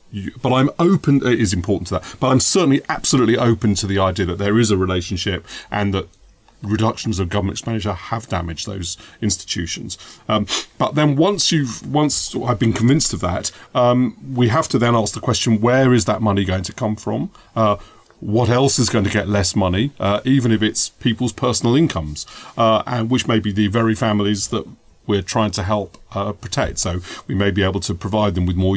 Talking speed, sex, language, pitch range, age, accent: 210 wpm, male, English, 95-120 Hz, 40-59, British